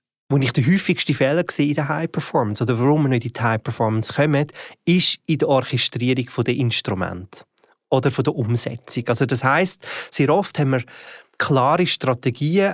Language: German